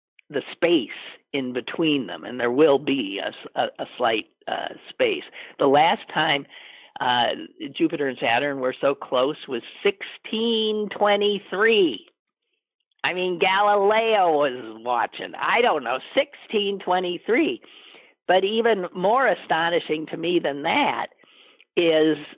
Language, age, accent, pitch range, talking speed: English, 50-69, American, 140-240 Hz, 120 wpm